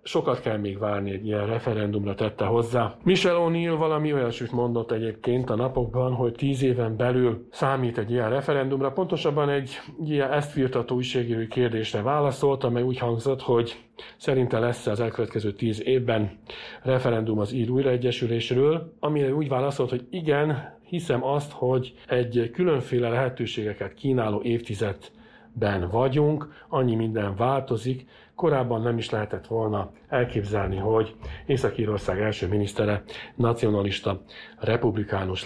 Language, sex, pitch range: Hungarian, male, 110-130 Hz